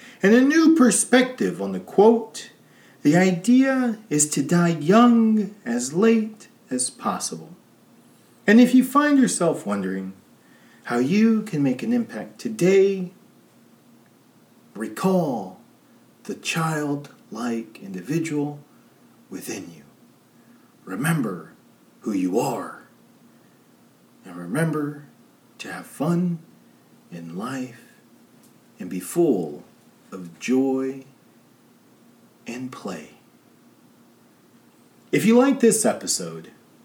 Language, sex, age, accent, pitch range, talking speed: English, male, 40-59, American, 135-220 Hz, 95 wpm